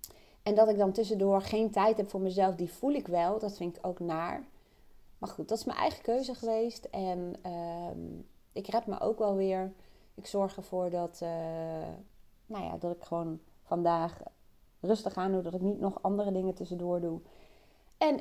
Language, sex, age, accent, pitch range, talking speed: Dutch, female, 30-49, Dutch, 170-205 Hz, 190 wpm